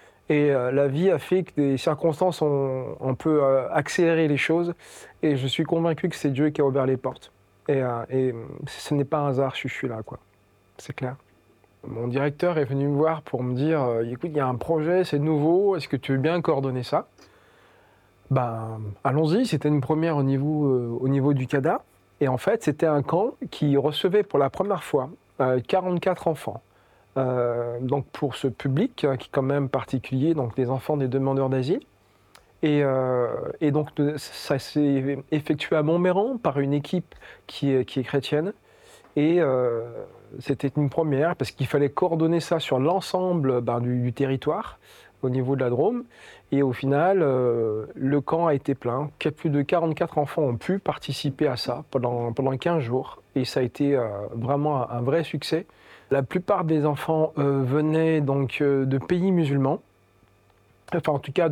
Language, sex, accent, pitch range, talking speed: French, male, French, 130-160 Hz, 190 wpm